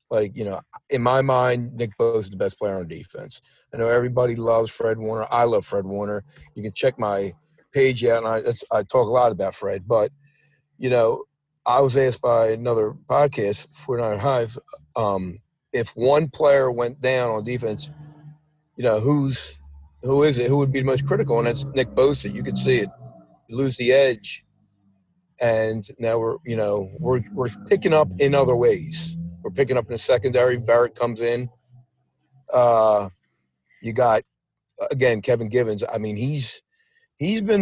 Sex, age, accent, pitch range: male, 40-59, American, 110-140 Hz